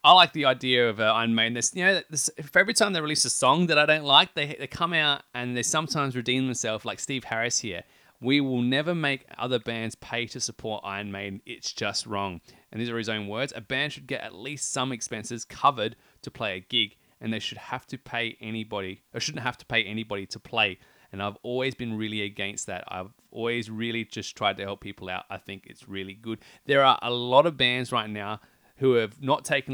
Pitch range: 105-130 Hz